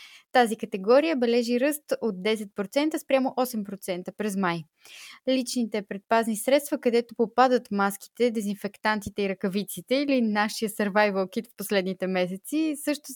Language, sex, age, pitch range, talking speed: Bulgarian, female, 20-39, 195-260 Hz, 125 wpm